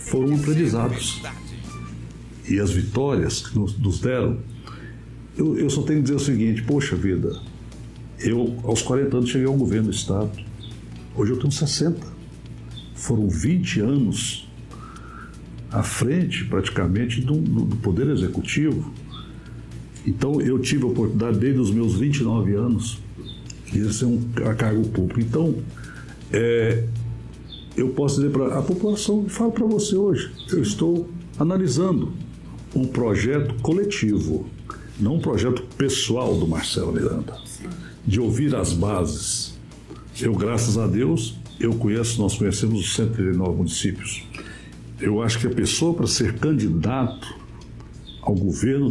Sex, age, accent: male, 60-79, Brazilian